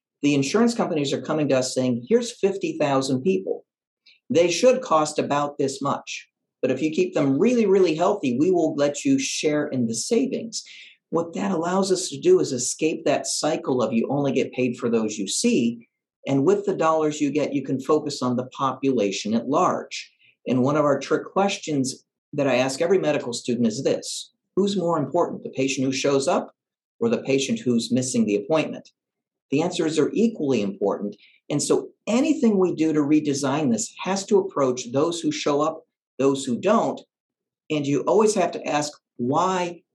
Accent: American